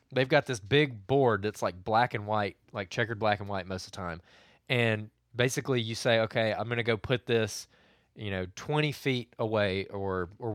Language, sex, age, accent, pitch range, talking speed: English, male, 20-39, American, 100-130 Hz, 210 wpm